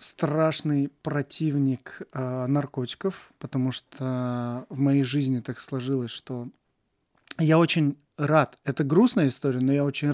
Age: 20-39